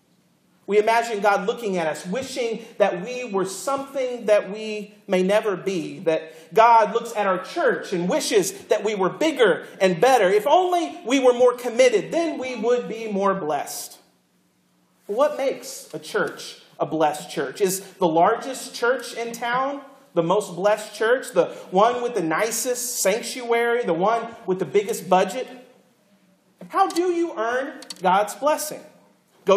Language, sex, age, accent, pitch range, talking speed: English, male, 40-59, American, 200-280 Hz, 160 wpm